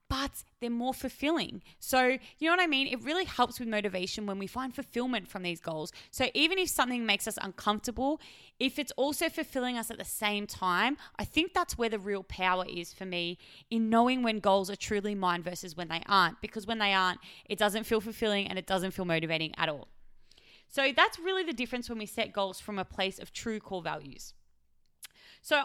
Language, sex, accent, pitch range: English, female, Australian, 195-255 Hz